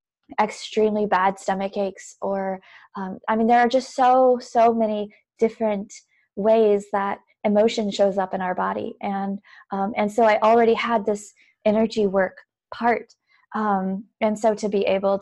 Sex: female